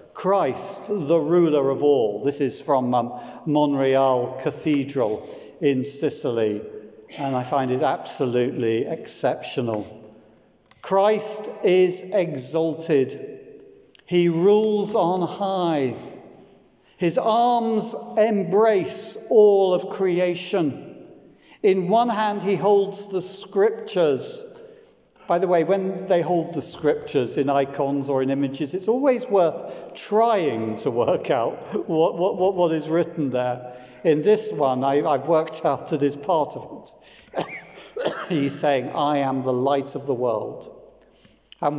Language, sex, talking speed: English, male, 125 wpm